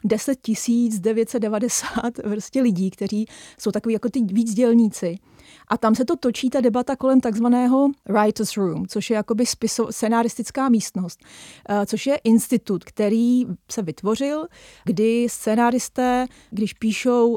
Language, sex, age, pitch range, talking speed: Czech, female, 30-49, 205-245 Hz, 120 wpm